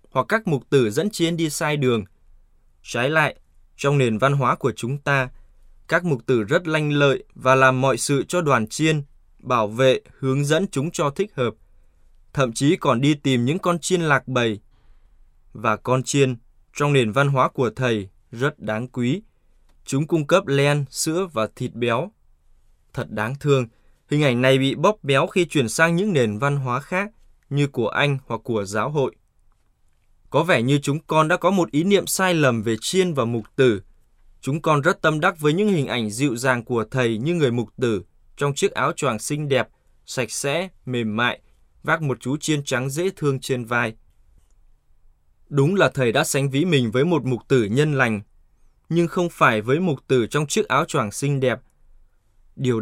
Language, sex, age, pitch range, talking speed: Vietnamese, male, 20-39, 115-150 Hz, 195 wpm